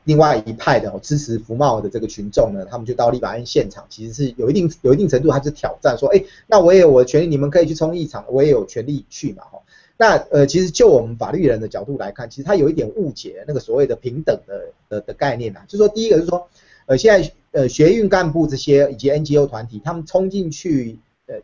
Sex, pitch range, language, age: male, 130-185 Hz, Chinese, 30-49